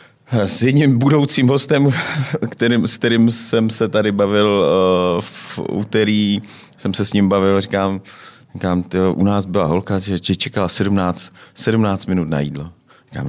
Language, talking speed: Czech, 160 wpm